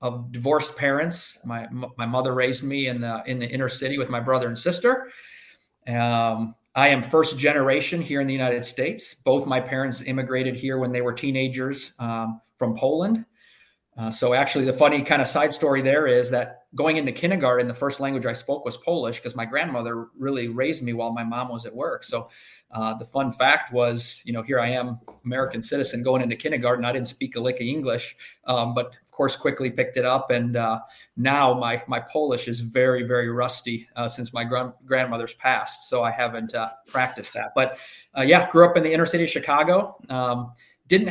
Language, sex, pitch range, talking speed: English, male, 120-140 Hz, 205 wpm